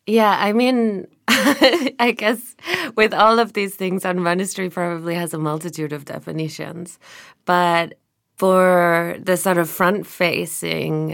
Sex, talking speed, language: female, 125 wpm, English